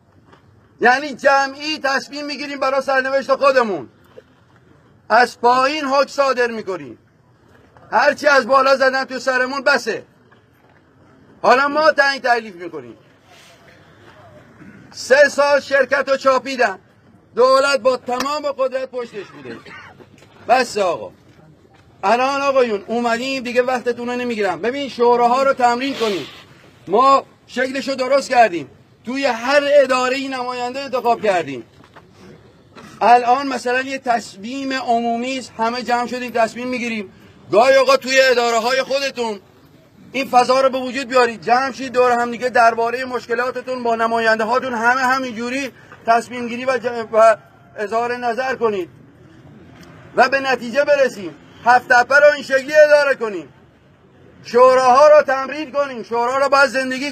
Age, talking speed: 50-69, 130 wpm